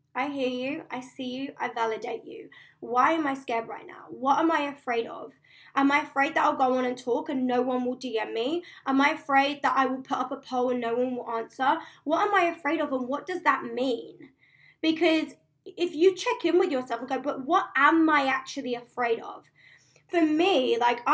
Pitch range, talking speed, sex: 240-305 Hz, 225 wpm, female